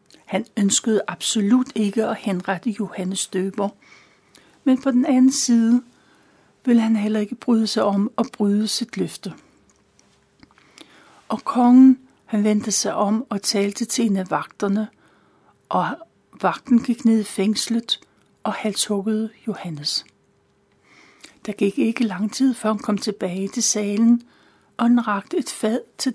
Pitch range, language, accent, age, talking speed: 200-235 Hz, Danish, native, 60-79, 140 wpm